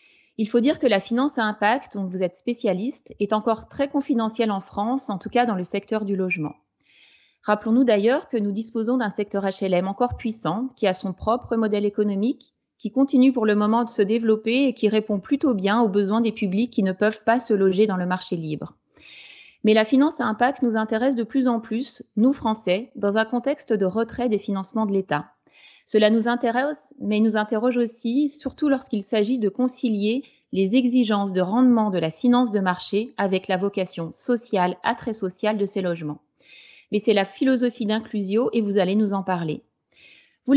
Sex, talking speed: female, 195 wpm